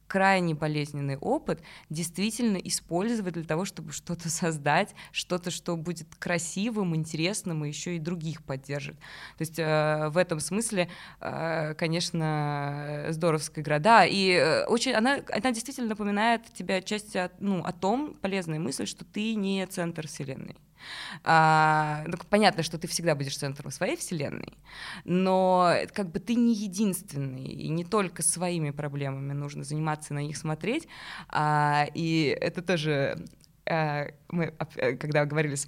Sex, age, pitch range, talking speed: female, 20-39, 150-185 Hz, 140 wpm